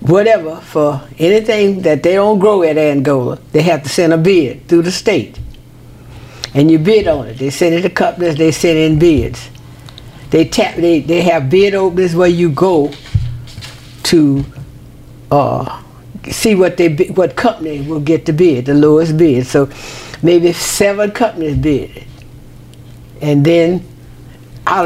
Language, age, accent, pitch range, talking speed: English, 60-79, American, 140-170 Hz, 155 wpm